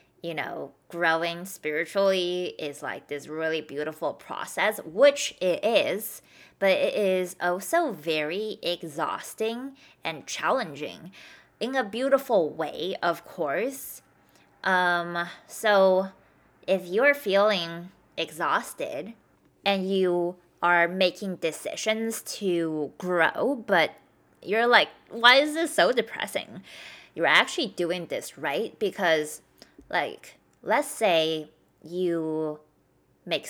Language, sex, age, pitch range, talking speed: English, female, 20-39, 170-225 Hz, 105 wpm